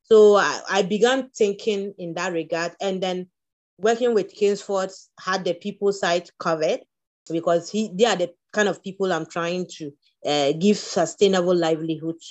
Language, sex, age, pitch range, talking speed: English, female, 30-49, 175-215 Hz, 160 wpm